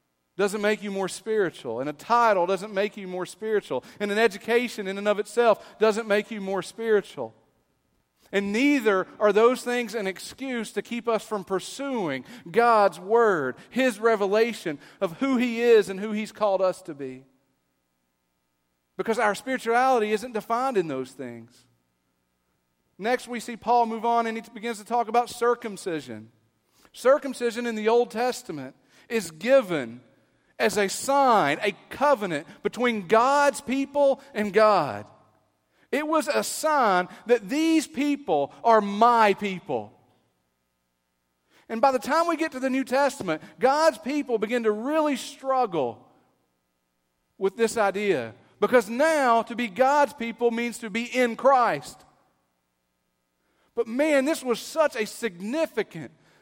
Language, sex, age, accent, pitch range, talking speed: English, male, 40-59, American, 160-245 Hz, 145 wpm